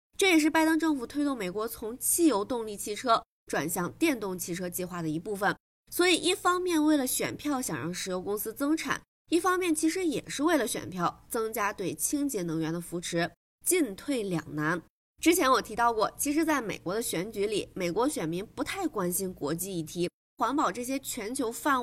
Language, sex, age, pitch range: Chinese, female, 20-39, 205-310 Hz